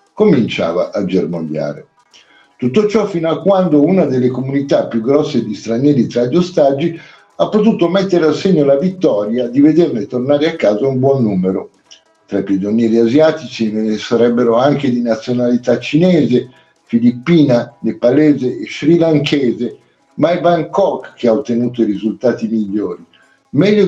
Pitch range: 115-160 Hz